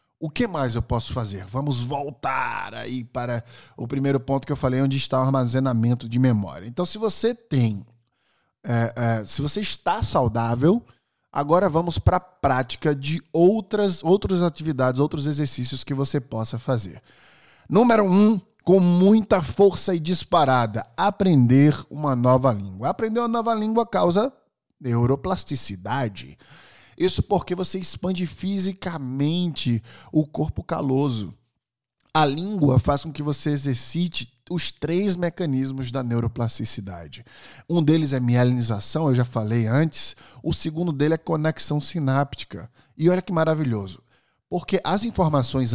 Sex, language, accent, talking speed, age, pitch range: male, Portuguese, Brazilian, 140 wpm, 20-39, 120-175 Hz